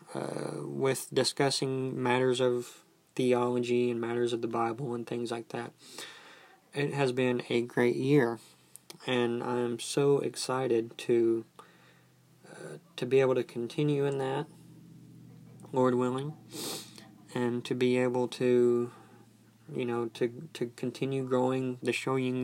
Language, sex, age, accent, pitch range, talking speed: English, male, 20-39, American, 120-130 Hz, 130 wpm